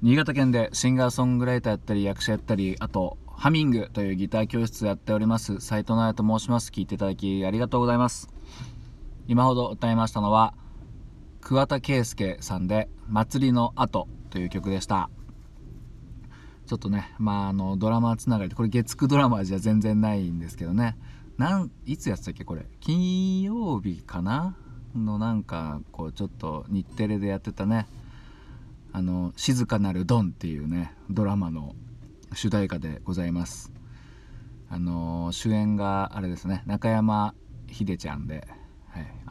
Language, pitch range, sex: Japanese, 90-120 Hz, male